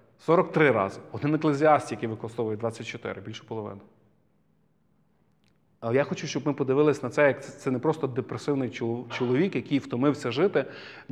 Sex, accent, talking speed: male, native, 145 wpm